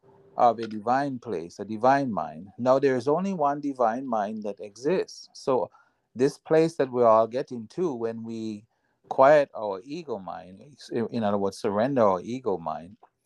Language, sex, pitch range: English, male, 115-140 Hz